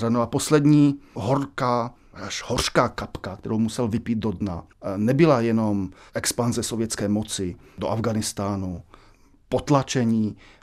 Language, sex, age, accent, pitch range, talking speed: Czech, male, 40-59, native, 105-125 Hz, 105 wpm